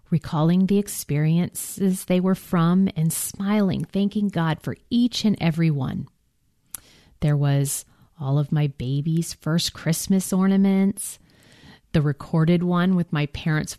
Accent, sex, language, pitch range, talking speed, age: American, female, English, 145-190 Hz, 130 wpm, 40-59